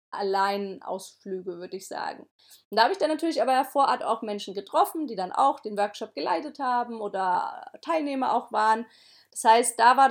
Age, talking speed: 30-49, 190 wpm